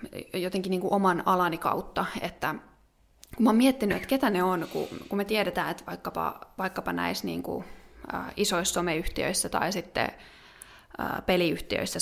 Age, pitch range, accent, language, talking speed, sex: 20-39, 175-200 Hz, native, Finnish, 145 wpm, female